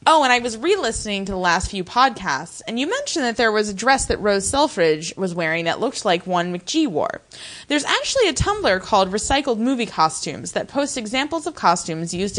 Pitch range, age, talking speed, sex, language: 185-265 Hz, 20-39, 210 wpm, female, English